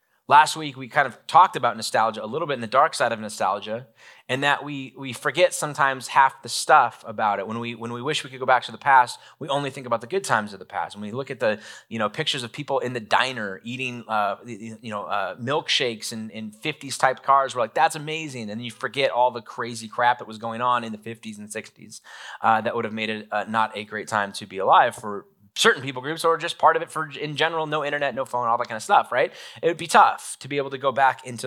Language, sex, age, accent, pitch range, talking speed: English, male, 20-39, American, 110-135 Hz, 265 wpm